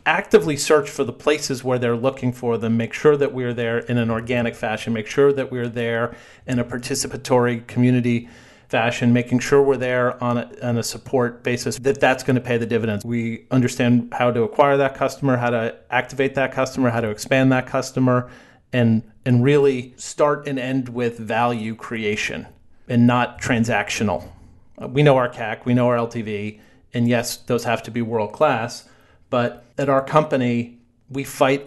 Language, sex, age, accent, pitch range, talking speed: English, male, 40-59, American, 115-130 Hz, 180 wpm